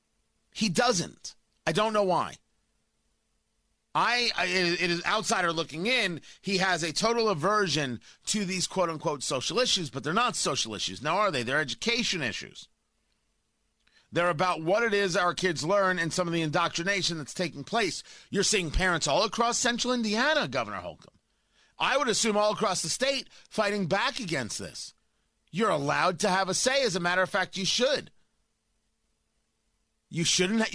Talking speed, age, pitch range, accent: 170 wpm, 30-49, 140-200 Hz, American